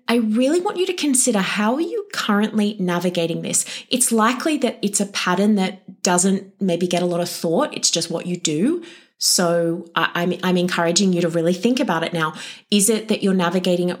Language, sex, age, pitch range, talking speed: English, female, 20-39, 175-230 Hz, 205 wpm